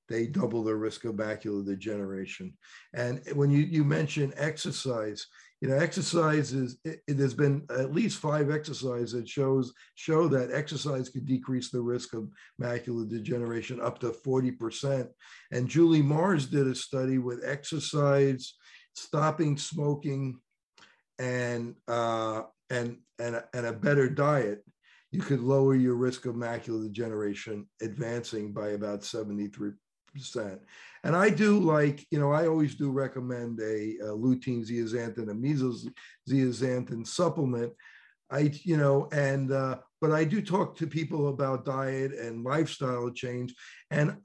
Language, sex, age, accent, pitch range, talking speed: English, male, 50-69, American, 120-150 Hz, 140 wpm